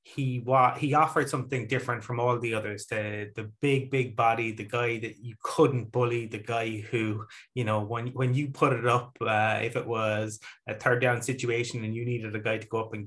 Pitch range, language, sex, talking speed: 110-130 Hz, English, male, 225 wpm